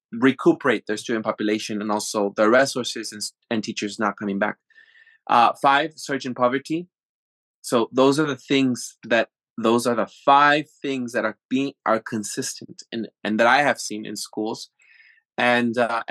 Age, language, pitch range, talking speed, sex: 20-39, English, 110-135 Hz, 170 wpm, male